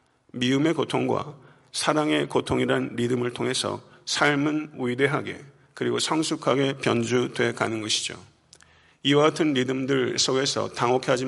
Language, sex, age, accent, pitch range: Korean, male, 40-59, native, 125-145 Hz